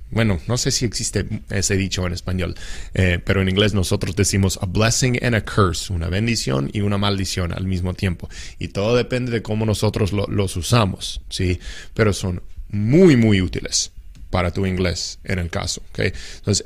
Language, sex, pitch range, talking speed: English, male, 95-115 Hz, 175 wpm